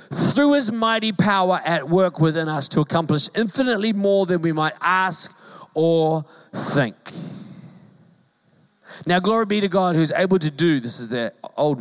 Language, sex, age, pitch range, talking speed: English, male, 40-59, 170-230 Hz, 160 wpm